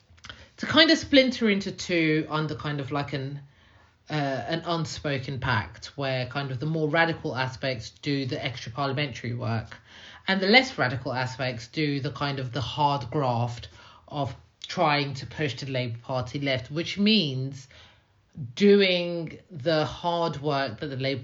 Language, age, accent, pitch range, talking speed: English, 30-49, British, 120-155 Hz, 160 wpm